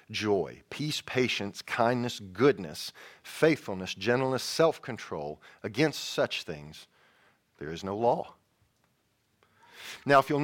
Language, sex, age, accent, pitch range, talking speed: English, male, 40-59, American, 100-130 Hz, 110 wpm